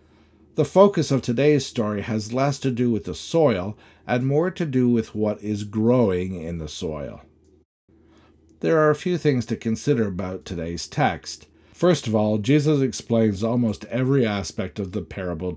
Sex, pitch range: male, 90-130 Hz